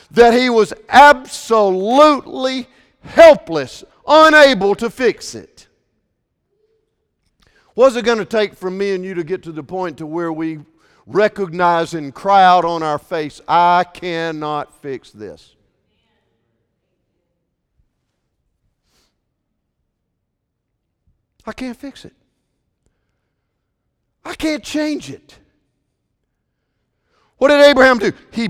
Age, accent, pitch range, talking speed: 50-69, American, 185-285 Hz, 105 wpm